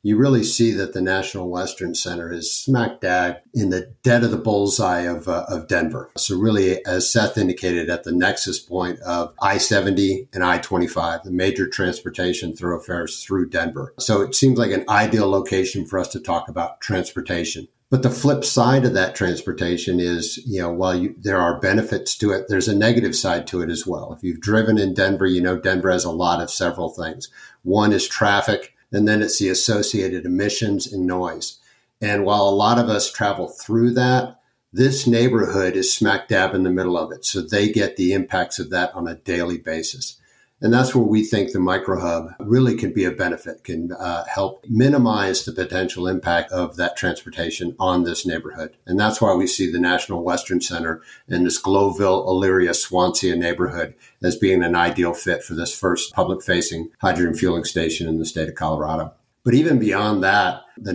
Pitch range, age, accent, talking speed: 90-110 Hz, 50-69, American, 195 wpm